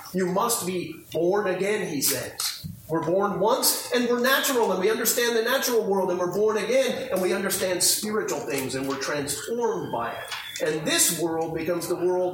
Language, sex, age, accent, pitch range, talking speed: English, male, 40-59, American, 175-230 Hz, 190 wpm